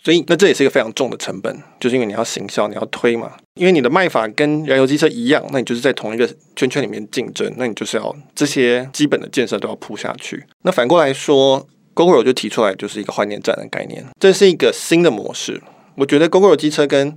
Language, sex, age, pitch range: Chinese, male, 20-39, 120-155 Hz